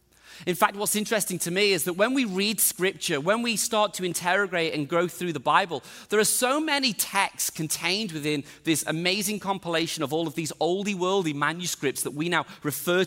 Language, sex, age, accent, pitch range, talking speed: English, male, 30-49, British, 180-230 Hz, 195 wpm